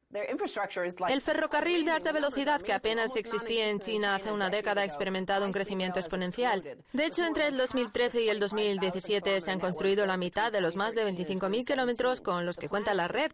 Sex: female